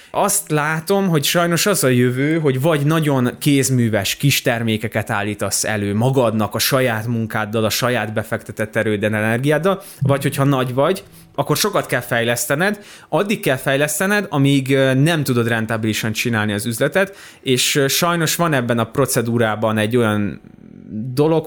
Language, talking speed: Hungarian, 145 wpm